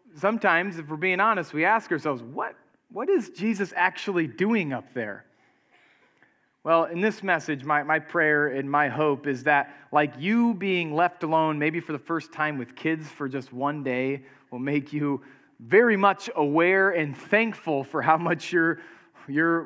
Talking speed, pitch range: 175 wpm, 140-170 Hz